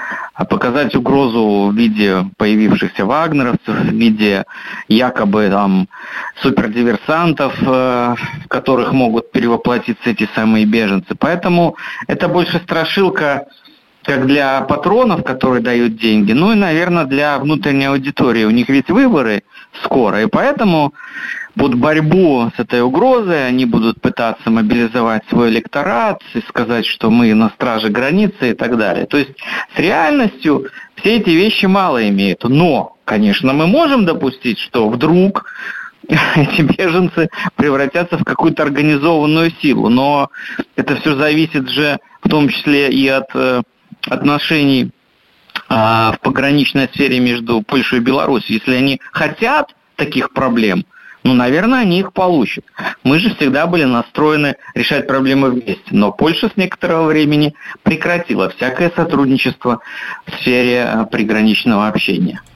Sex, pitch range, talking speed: male, 120-165 Hz, 130 wpm